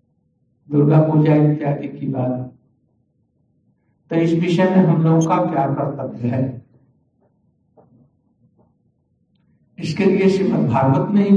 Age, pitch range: 60-79, 130-160 Hz